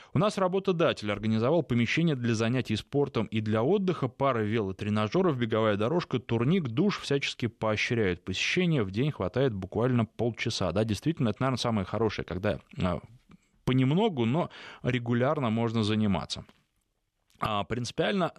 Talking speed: 125 wpm